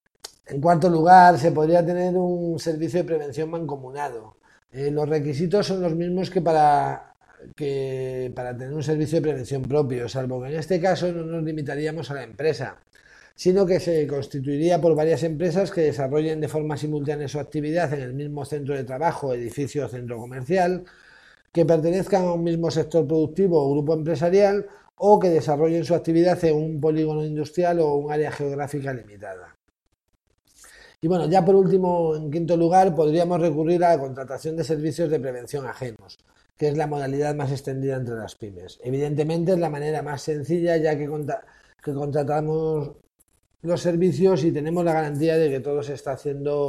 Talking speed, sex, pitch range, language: 170 wpm, male, 145-170 Hz, Spanish